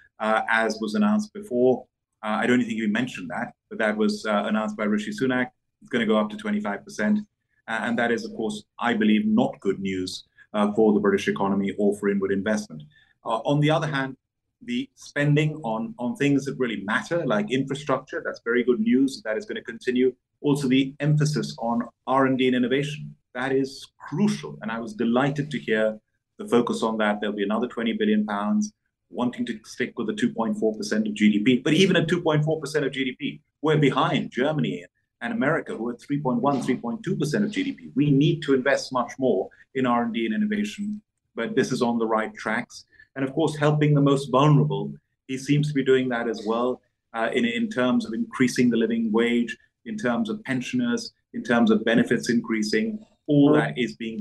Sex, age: male, 30-49